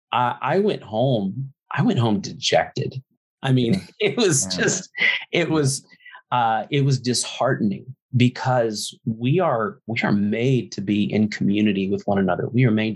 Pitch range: 105-130 Hz